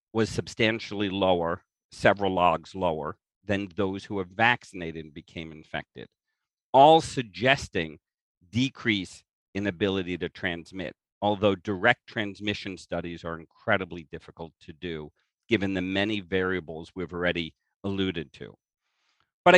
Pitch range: 90-120 Hz